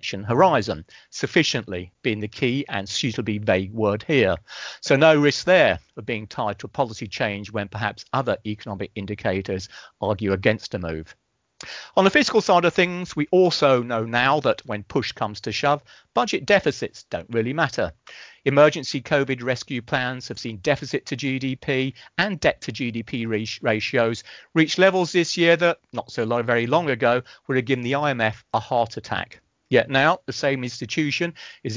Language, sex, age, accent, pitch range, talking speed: English, male, 40-59, British, 110-150 Hz, 170 wpm